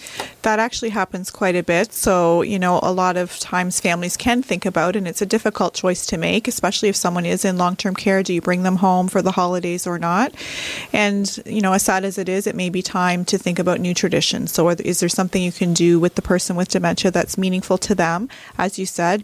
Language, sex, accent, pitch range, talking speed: English, female, American, 170-190 Hz, 245 wpm